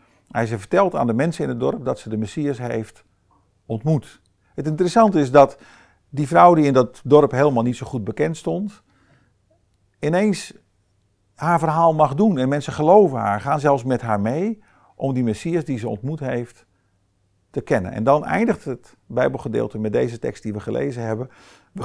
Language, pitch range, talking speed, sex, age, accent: Dutch, 105-140 Hz, 185 wpm, male, 50-69, Dutch